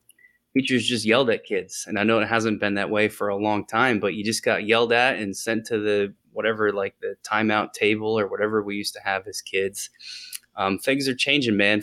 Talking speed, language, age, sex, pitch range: 230 wpm, English, 20-39, male, 100-120 Hz